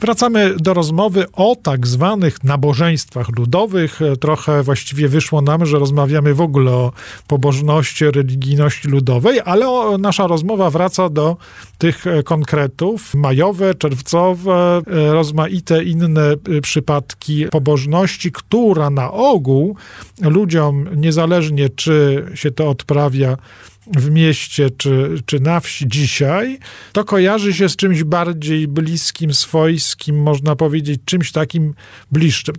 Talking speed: 115 wpm